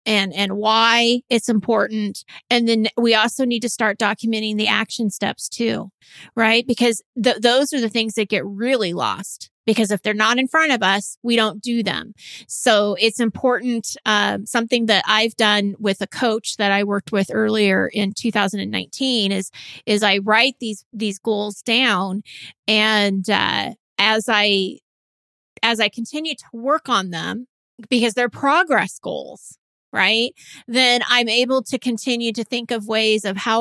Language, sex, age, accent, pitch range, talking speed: English, female, 30-49, American, 205-240 Hz, 170 wpm